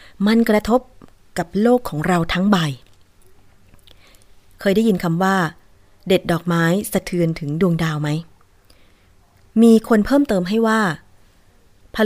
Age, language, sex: 20-39, Thai, female